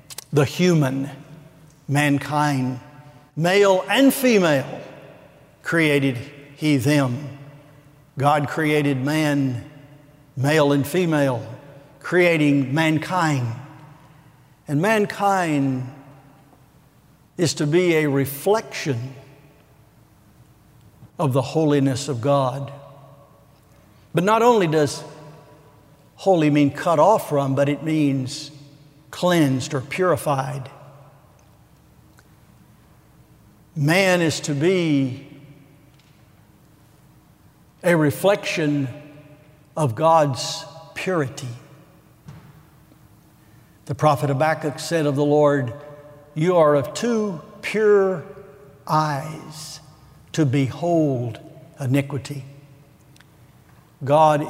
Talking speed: 75 wpm